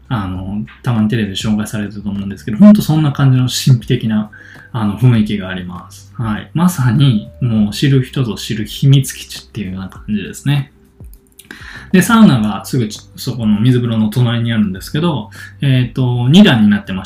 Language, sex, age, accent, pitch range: Japanese, male, 20-39, native, 105-165 Hz